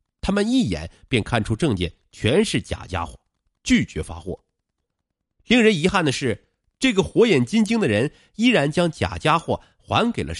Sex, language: male, Chinese